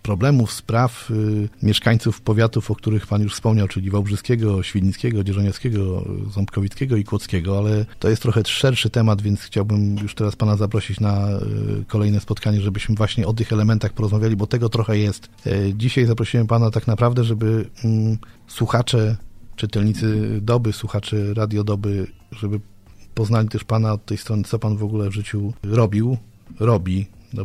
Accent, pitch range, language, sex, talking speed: native, 95-115 Hz, Polish, male, 150 wpm